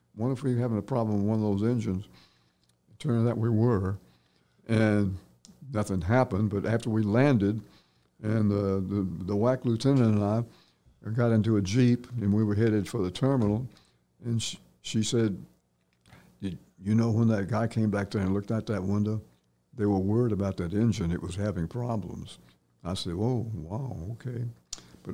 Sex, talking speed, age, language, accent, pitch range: male, 185 wpm, 60-79, English, American, 95-115 Hz